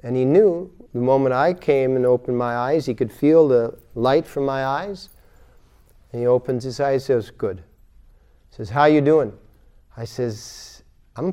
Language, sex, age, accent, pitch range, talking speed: English, male, 50-69, American, 110-145 Hz, 185 wpm